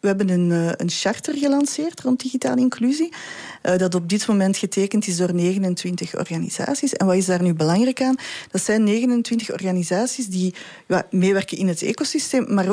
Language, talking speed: English, 165 wpm